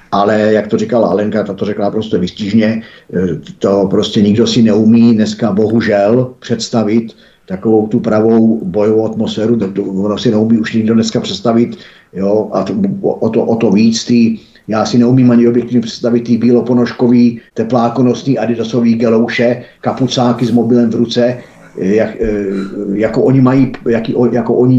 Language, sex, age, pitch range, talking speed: Czech, male, 50-69, 110-125 Hz, 150 wpm